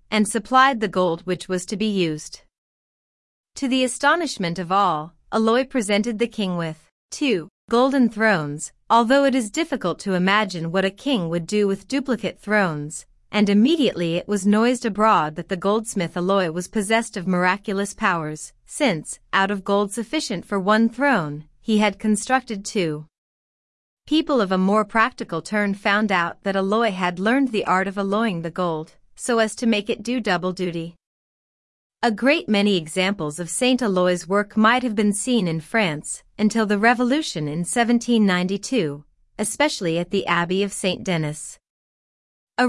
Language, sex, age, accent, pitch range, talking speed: English, female, 30-49, American, 180-230 Hz, 165 wpm